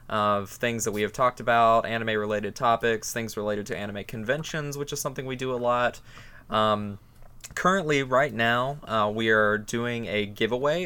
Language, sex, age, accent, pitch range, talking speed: English, male, 20-39, American, 105-125 Hz, 170 wpm